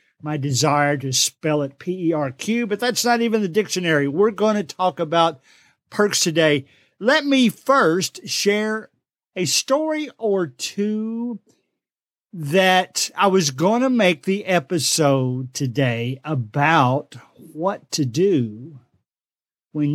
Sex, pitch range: male, 145-195 Hz